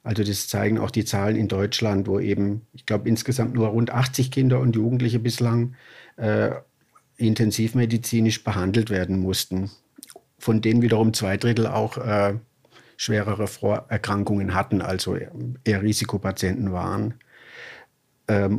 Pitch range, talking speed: 105-120 Hz, 130 wpm